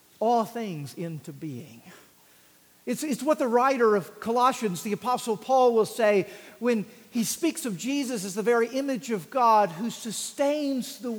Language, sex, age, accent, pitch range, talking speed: English, male, 50-69, American, 180-240 Hz, 160 wpm